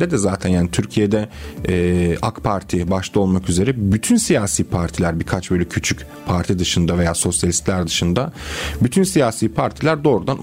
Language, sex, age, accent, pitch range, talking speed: Turkish, male, 40-59, native, 90-115 Hz, 145 wpm